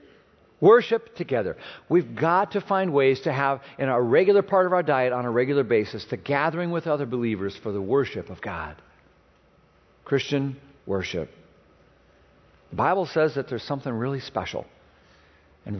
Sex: male